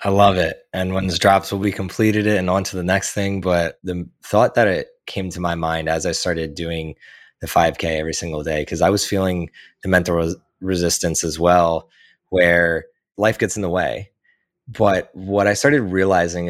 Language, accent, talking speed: English, American, 205 wpm